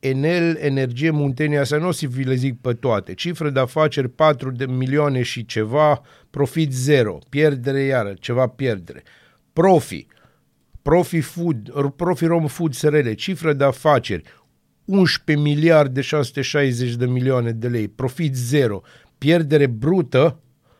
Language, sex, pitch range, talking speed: Romanian, male, 125-155 Hz, 140 wpm